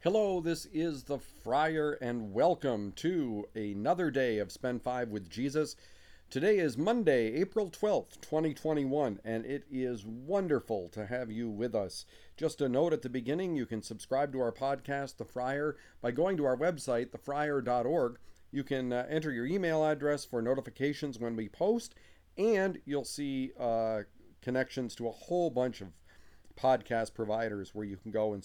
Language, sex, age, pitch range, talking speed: English, male, 40-59, 105-150 Hz, 165 wpm